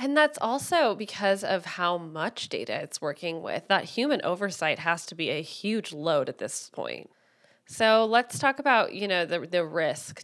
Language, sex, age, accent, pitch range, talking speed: English, female, 20-39, American, 165-195 Hz, 190 wpm